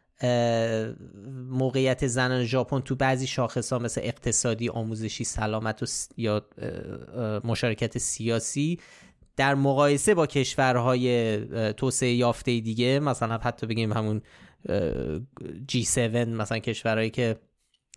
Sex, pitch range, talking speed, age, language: male, 115-140 Hz, 105 wpm, 20-39, Persian